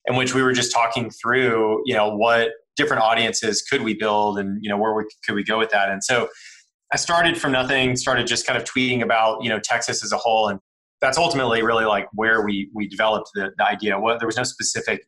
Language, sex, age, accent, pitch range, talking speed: English, male, 30-49, American, 105-120 Hz, 240 wpm